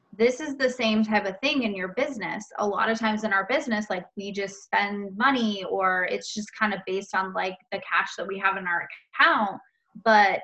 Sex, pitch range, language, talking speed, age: female, 195-230 Hz, English, 225 wpm, 20-39